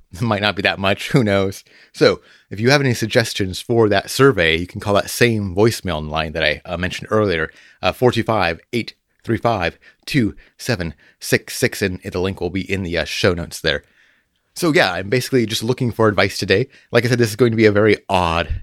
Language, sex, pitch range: English, male, 95-120 Hz